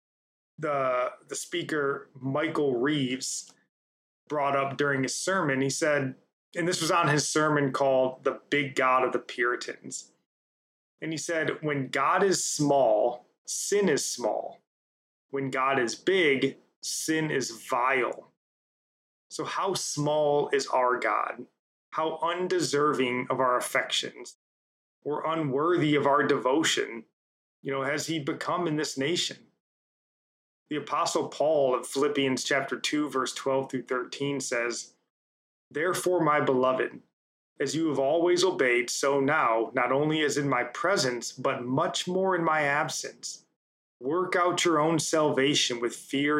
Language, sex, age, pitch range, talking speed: English, male, 20-39, 130-155 Hz, 140 wpm